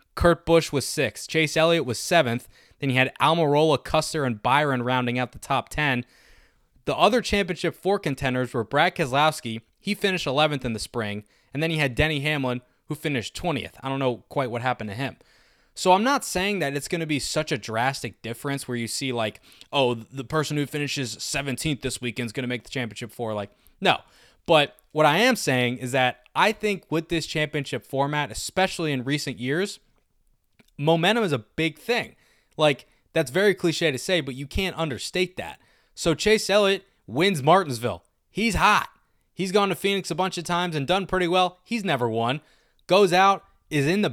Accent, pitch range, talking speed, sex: American, 130-180 Hz, 195 wpm, male